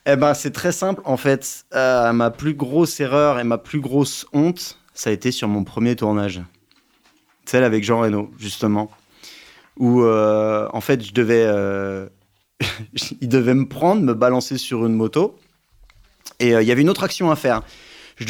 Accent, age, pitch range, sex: French, 30-49, 110-140 Hz, male